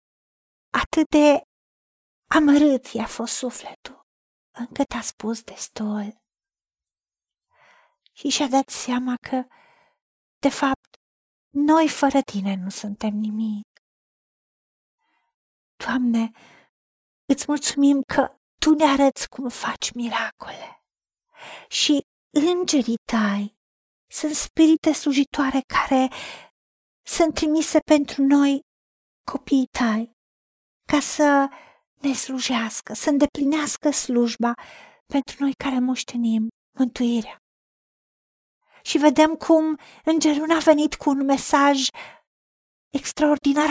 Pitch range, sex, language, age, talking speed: 240-300 Hz, female, Romanian, 40-59, 95 wpm